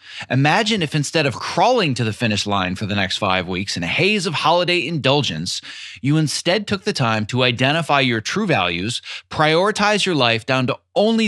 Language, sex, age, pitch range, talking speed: English, male, 30-49, 115-170 Hz, 190 wpm